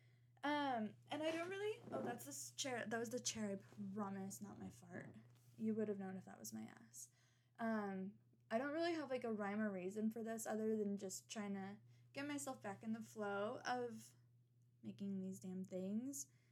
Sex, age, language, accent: female, 10-29, English, American